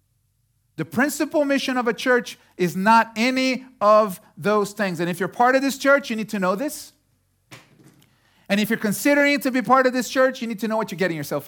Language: English